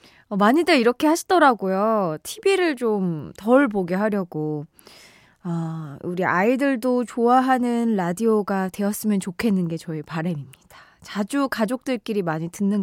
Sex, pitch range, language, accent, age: female, 180-280 Hz, Korean, native, 20-39